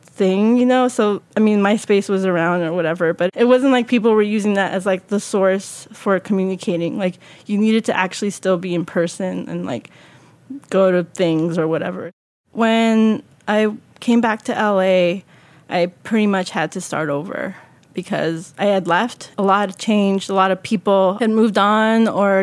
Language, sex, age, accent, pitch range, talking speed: English, female, 20-39, American, 190-220 Hz, 185 wpm